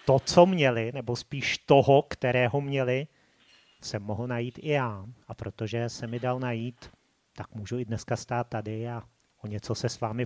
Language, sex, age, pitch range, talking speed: Czech, male, 30-49, 115-140 Hz, 180 wpm